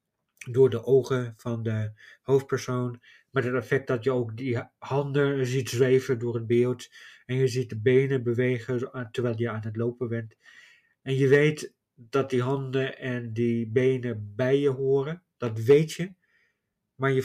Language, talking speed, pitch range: Dutch, 165 wpm, 120-145 Hz